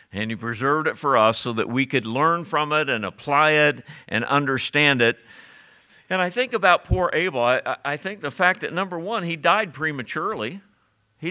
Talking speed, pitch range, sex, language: 195 wpm, 120-170 Hz, male, English